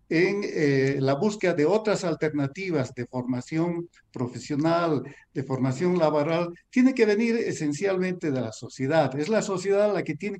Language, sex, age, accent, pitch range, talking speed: Spanish, male, 60-79, Mexican, 135-195 Hz, 150 wpm